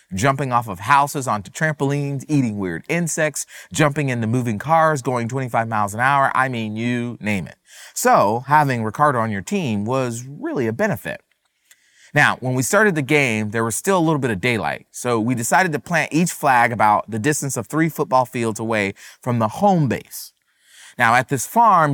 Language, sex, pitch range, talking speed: English, male, 115-155 Hz, 190 wpm